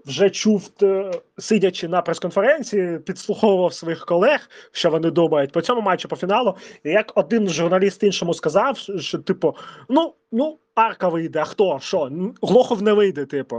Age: 20-39